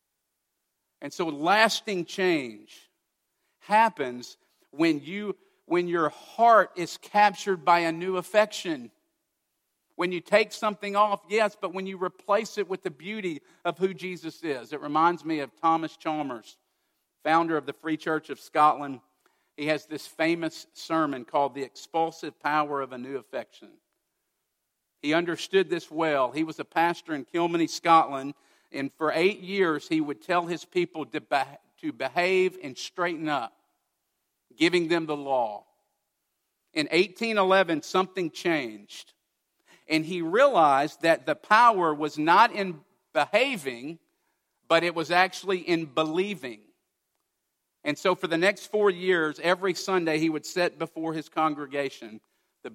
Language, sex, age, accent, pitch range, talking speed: English, male, 50-69, American, 155-195 Hz, 145 wpm